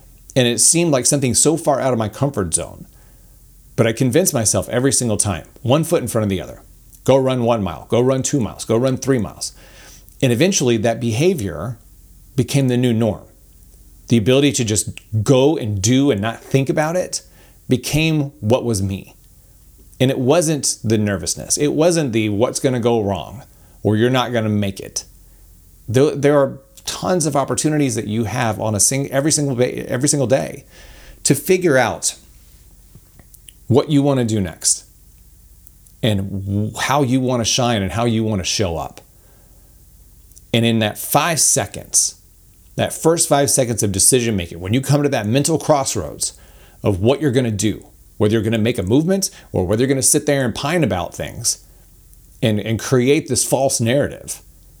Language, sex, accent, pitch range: English, male, American, 100-140 Hz